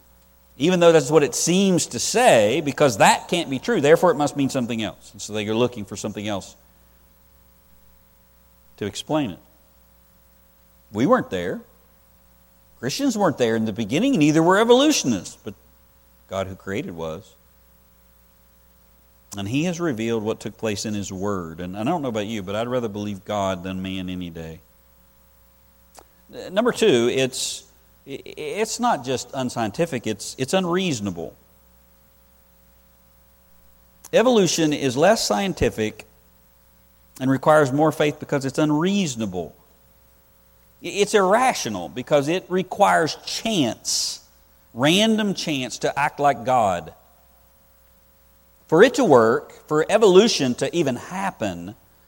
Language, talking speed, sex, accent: English, 130 wpm, male, American